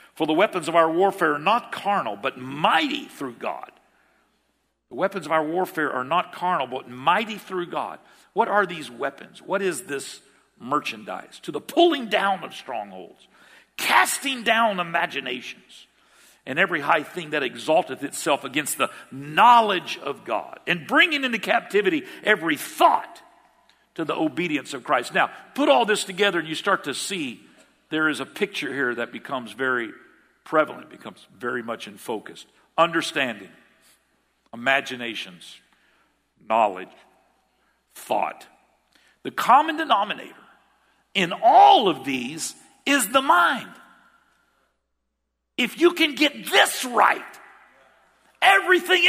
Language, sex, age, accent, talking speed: English, male, 50-69, American, 135 wpm